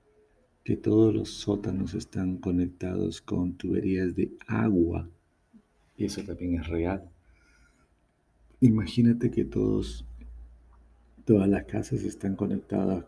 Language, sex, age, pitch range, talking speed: Spanish, male, 50-69, 80-100 Hz, 100 wpm